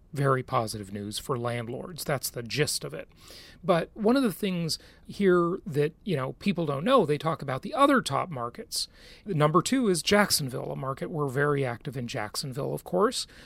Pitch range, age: 145-215 Hz, 40-59